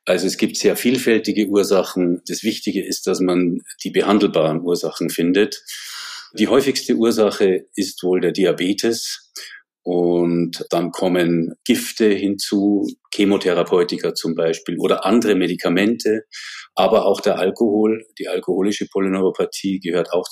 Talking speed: 125 wpm